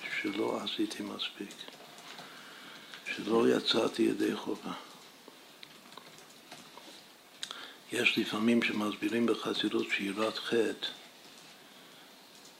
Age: 60-79